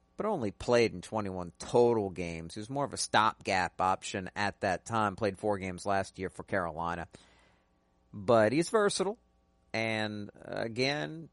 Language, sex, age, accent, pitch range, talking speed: English, male, 50-69, American, 80-115 Hz, 155 wpm